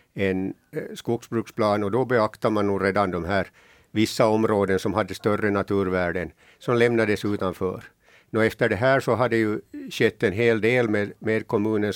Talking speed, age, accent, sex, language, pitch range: 170 wpm, 60-79, Finnish, male, Swedish, 105-120 Hz